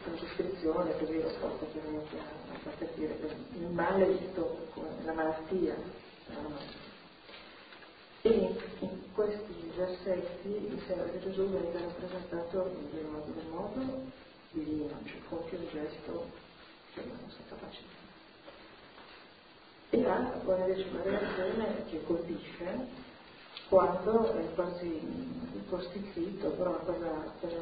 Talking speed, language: 135 wpm, Italian